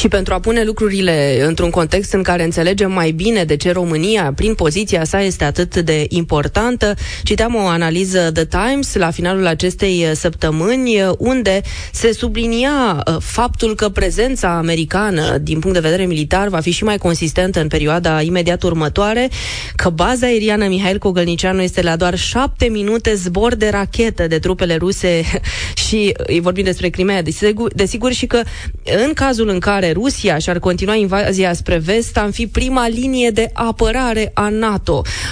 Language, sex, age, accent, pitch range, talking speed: Romanian, female, 20-39, native, 175-220 Hz, 160 wpm